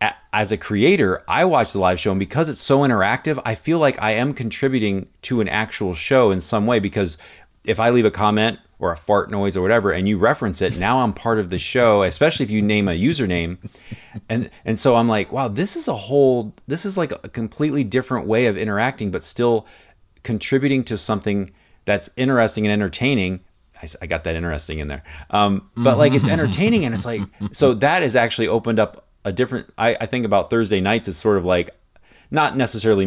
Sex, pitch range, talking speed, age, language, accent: male, 90-115 Hz, 210 wpm, 30-49, English, American